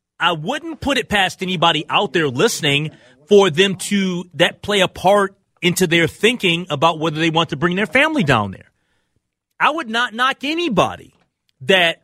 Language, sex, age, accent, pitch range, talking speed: English, male, 30-49, American, 140-200 Hz, 175 wpm